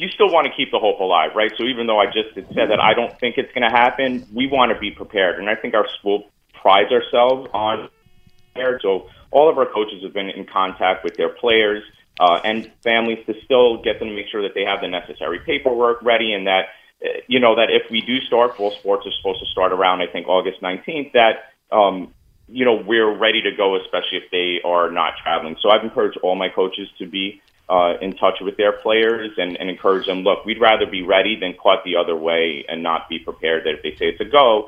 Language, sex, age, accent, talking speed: English, male, 30-49, American, 240 wpm